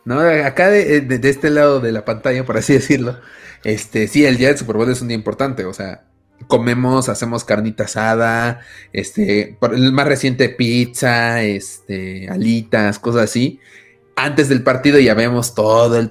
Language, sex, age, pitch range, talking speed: Spanish, male, 30-49, 115-145 Hz, 175 wpm